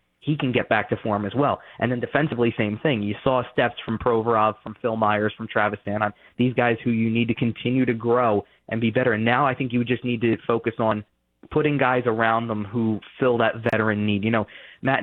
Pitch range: 105-120 Hz